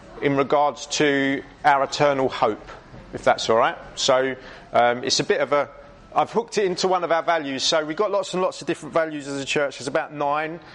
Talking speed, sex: 225 wpm, male